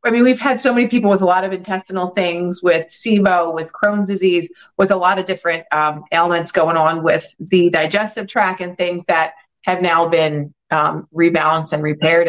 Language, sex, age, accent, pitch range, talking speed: English, female, 30-49, American, 170-200 Hz, 200 wpm